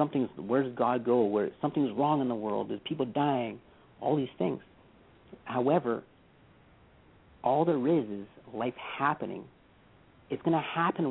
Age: 50-69